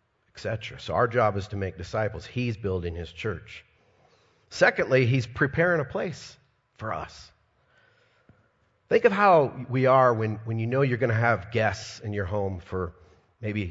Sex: male